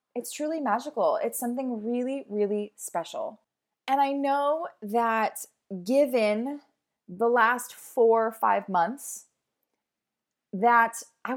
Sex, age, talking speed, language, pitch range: female, 20-39, 110 wpm, English, 185-250 Hz